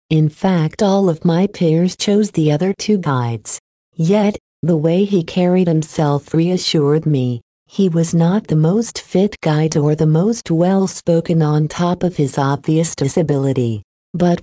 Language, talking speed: English, 155 wpm